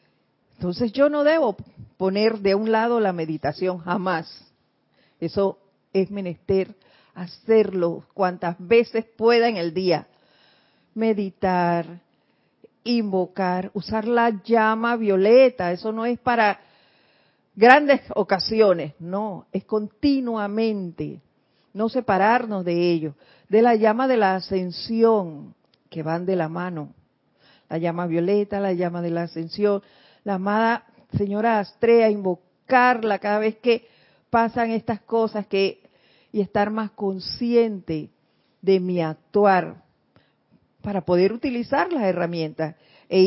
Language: Spanish